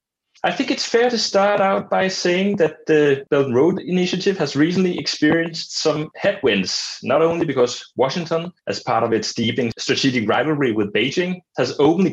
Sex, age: male, 30-49